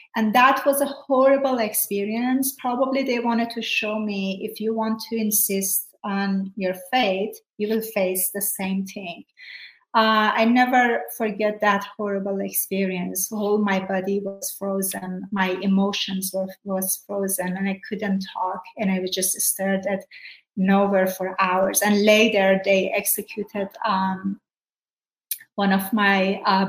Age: 30-49